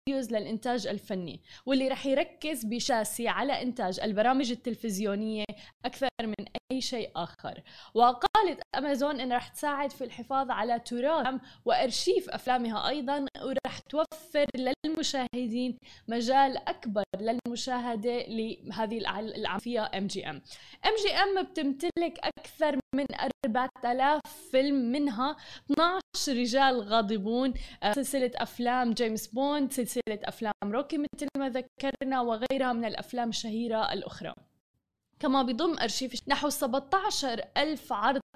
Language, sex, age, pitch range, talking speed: Arabic, female, 10-29, 230-275 Hz, 110 wpm